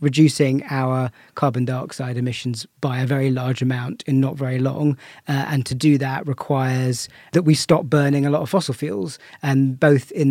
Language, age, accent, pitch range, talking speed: English, 40-59, British, 130-145 Hz, 190 wpm